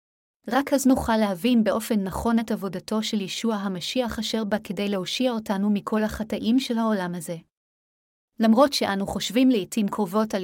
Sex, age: female, 30-49